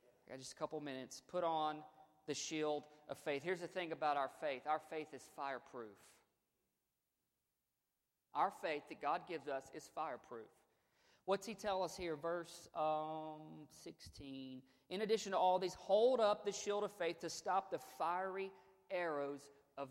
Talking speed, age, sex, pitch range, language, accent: 160 wpm, 40-59, male, 145-180 Hz, English, American